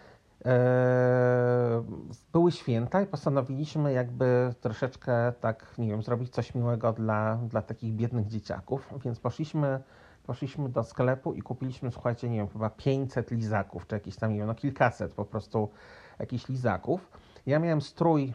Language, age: Polish, 40-59